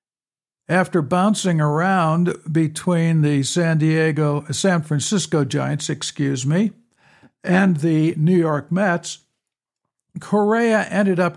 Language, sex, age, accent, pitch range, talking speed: English, male, 60-79, American, 150-185 Hz, 105 wpm